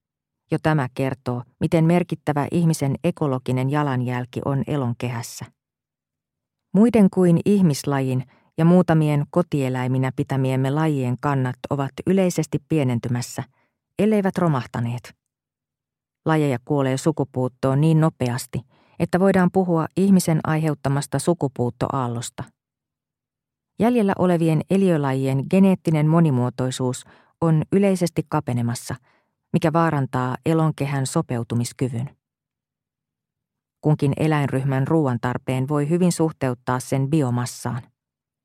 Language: Finnish